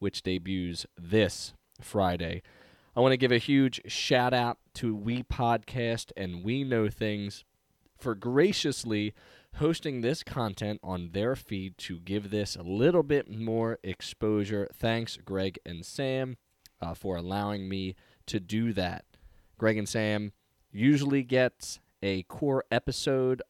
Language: English